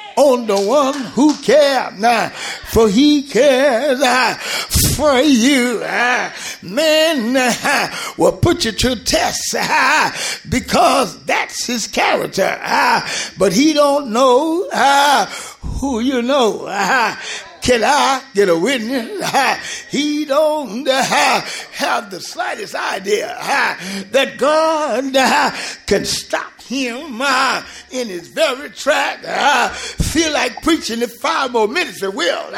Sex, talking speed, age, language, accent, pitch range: male, 130 wpm, 50-69, English, American, 245-305 Hz